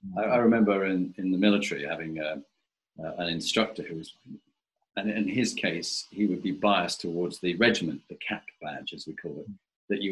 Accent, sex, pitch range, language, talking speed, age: British, male, 90-110 Hz, English, 195 wpm, 40-59